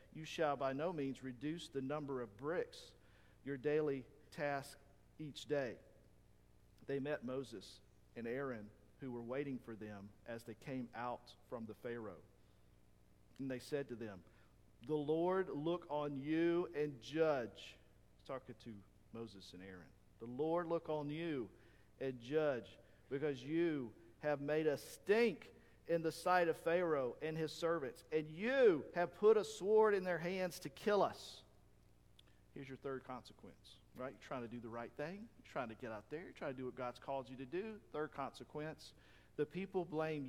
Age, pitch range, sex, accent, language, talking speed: 50-69, 120-170 Hz, male, American, English, 175 wpm